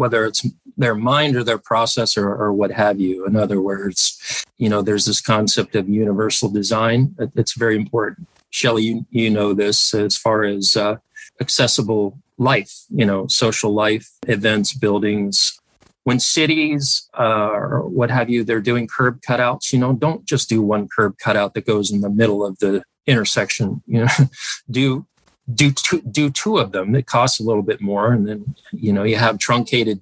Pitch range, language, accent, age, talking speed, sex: 105-130 Hz, English, American, 40-59, 185 wpm, male